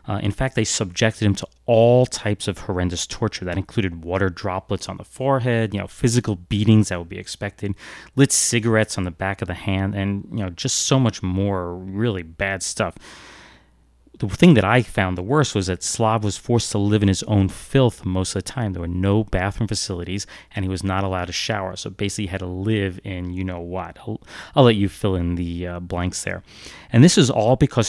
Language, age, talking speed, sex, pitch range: English, 30-49, 215 wpm, male, 95-120 Hz